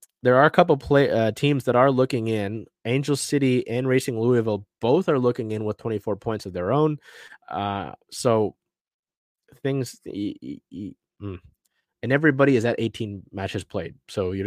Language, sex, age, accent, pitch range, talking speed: English, male, 20-39, American, 100-125 Hz, 180 wpm